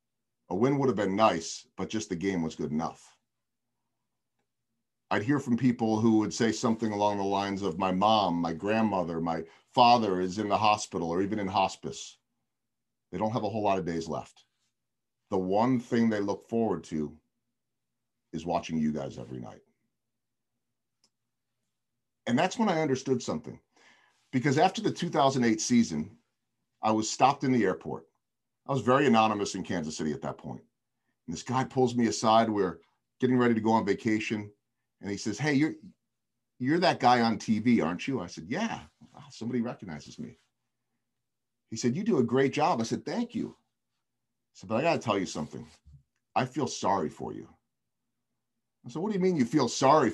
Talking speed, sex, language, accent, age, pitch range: 180 wpm, male, English, American, 40-59, 100-125 Hz